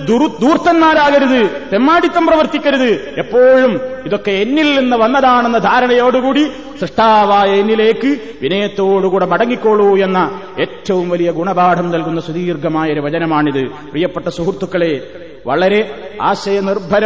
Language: Malayalam